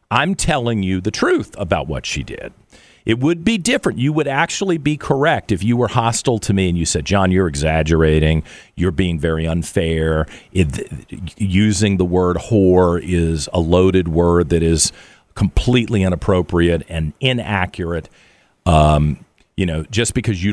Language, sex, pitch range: English, male, 90-135 Hz